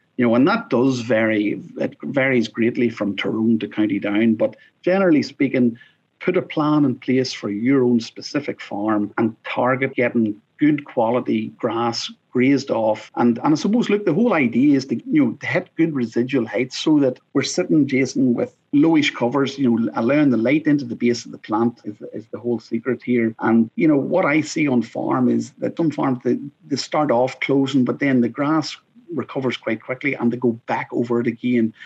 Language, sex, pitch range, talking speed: English, male, 115-140 Hz, 205 wpm